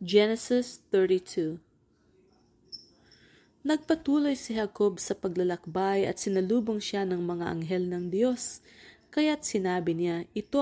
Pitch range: 170-215 Hz